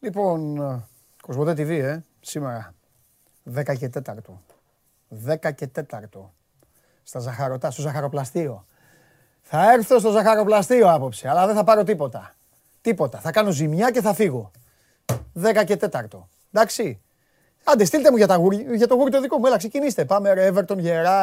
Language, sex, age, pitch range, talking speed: Greek, male, 30-49, 140-205 Hz, 135 wpm